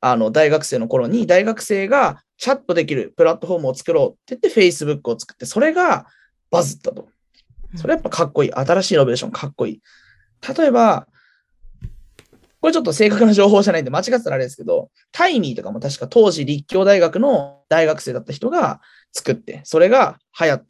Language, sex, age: Japanese, male, 20-39